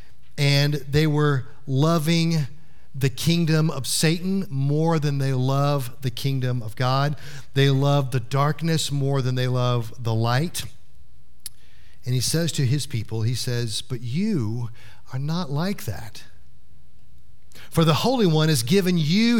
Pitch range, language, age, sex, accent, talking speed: 125-175 Hz, English, 40-59, male, American, 145 wpm